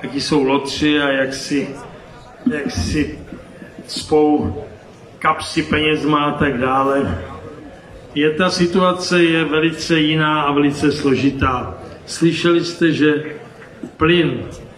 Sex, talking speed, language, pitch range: male, 115 wpm, Czech, 145-160 Hz